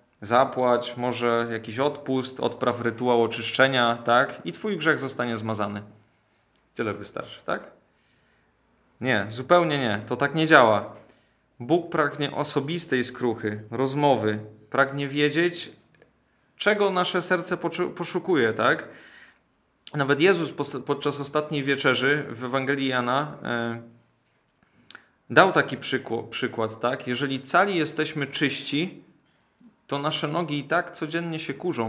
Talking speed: 110 wpm